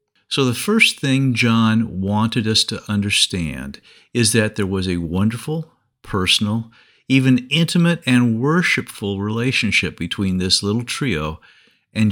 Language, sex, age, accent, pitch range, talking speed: English, male, 50-69, American, 95-130 Hz, 130 wpm